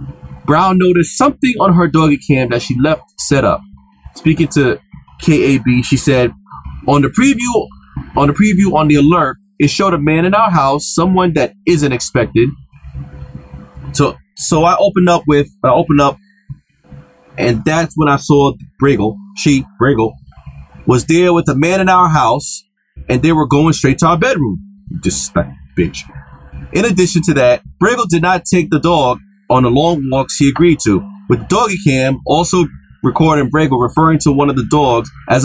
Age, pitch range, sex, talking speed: 30-49, 130-175 Hz, male, 175 wpm